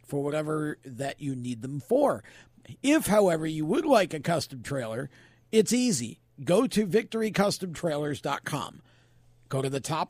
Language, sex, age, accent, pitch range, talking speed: English, male, 50-69, American, 135-185 Hz, 145 wpm